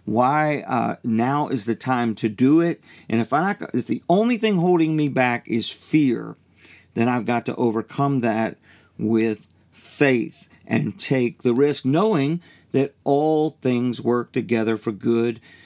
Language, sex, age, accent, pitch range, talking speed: English, male, 50-69, American, 120-160 Hz, 160 wpm